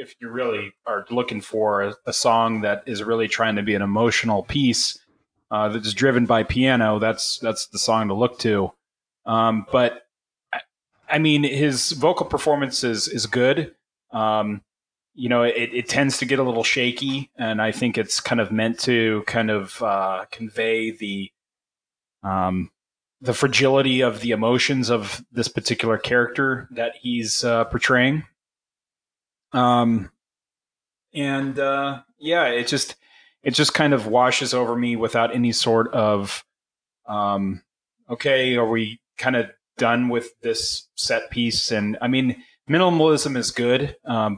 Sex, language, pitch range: male, English, 110-130 Hz